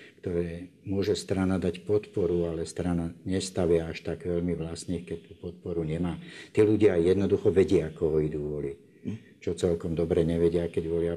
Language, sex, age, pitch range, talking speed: Slovak, male, 60-79, 85-95 Hz, 160 wpm